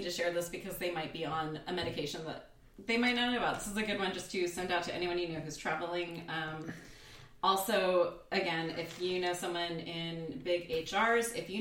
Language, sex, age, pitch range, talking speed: English, female, 30-49, 165-205 Hz, 220 wpm